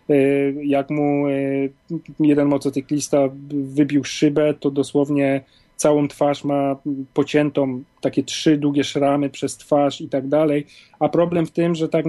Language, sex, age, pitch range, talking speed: Polish, male, 40-59, 140-160 Hz, 135 wpm